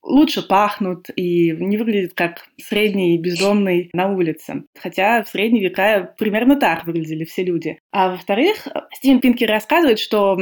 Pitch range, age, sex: 180-225 Hz, 20-39, female